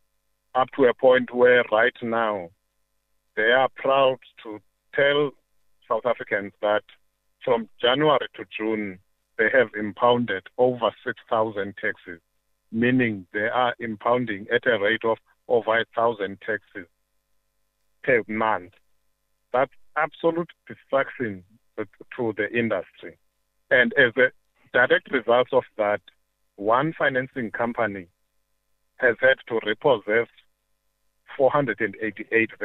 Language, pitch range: English, 100-130 Hz